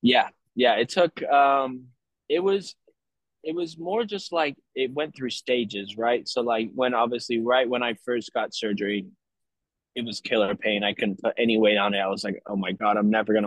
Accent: American